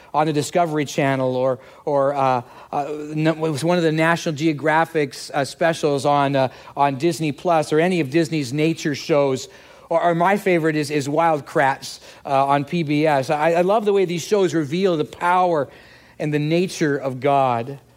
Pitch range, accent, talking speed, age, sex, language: 145-185 Hz, American, 180 wpm, 40-59, male, English